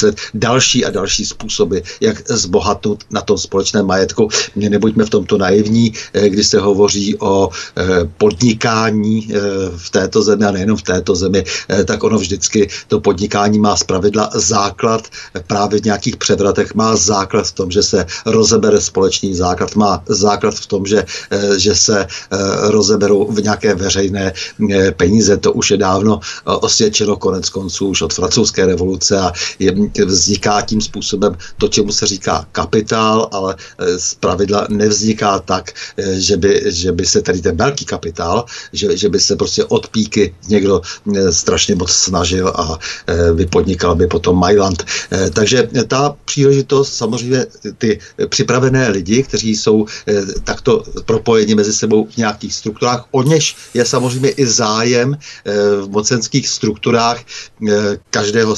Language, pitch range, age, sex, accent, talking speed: Czech, 100-115 Hz, 60-79, male, native, 140 wpm